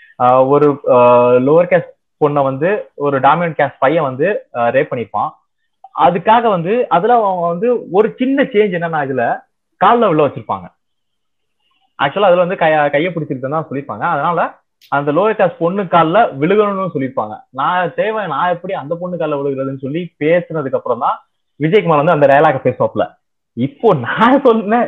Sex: male